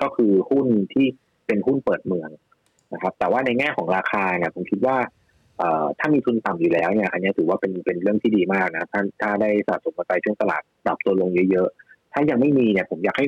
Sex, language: male, Thai